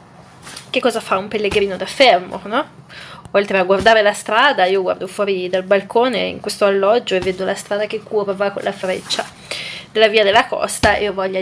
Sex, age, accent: female, 20-39, native